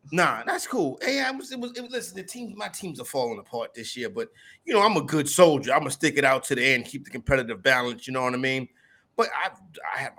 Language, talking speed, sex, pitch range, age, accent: English, 285 wpm, male, 125-180 Hz, 30-49, American